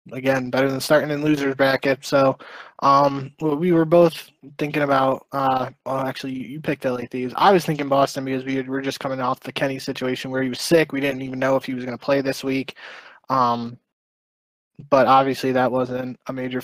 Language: English